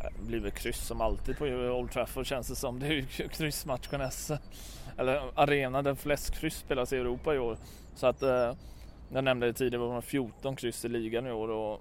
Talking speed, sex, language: 200 wpm, male, English